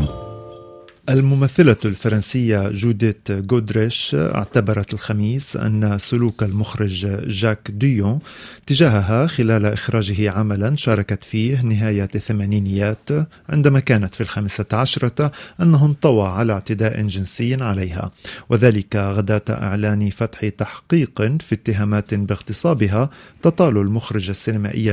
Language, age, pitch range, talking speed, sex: Arabic, 40-59, 105-125 Hz, 100 wpm, male